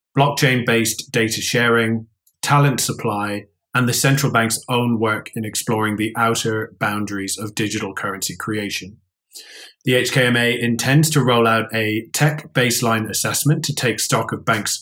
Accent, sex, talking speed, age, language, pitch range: British, male, 140 wpm, 20-39, English, 100-115 Hz